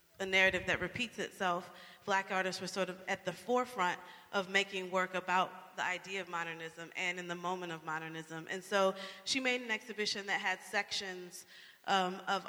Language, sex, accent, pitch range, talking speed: English, female, American, 185-210 Hz, 185 wpm